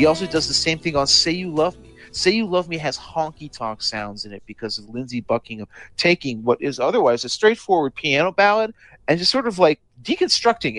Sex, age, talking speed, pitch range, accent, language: male, 30-49, 210 wpm, 110-135 Hz, American, English